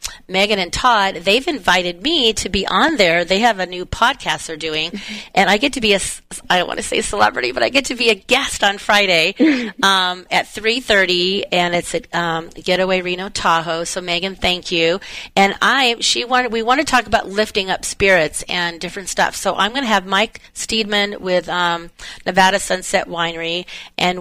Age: 40-59